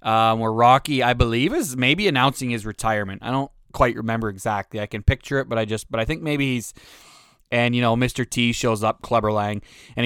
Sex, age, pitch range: male, 20-39, 115-140 Hz